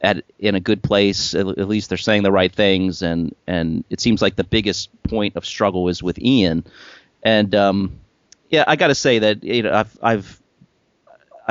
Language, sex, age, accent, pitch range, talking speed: English, male, 30-49, American, 90-115 Hz, 195 wpm